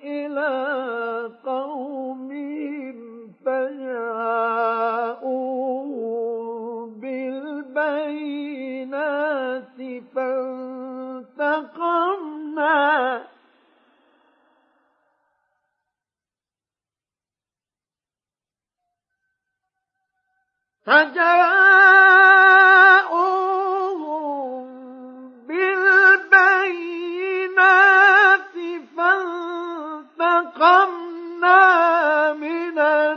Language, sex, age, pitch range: Arabic, male, 40-59, 265-345 Hz